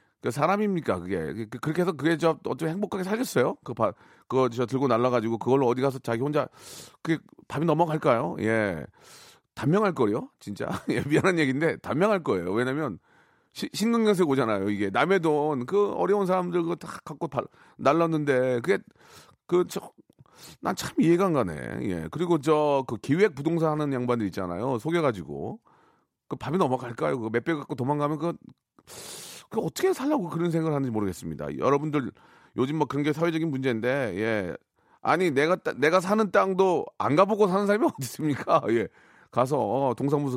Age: 40-59